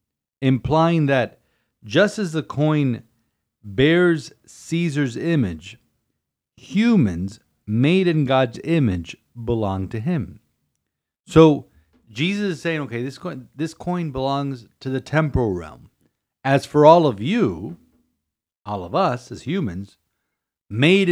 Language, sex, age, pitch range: English, male, 50-69, 115-170 Hz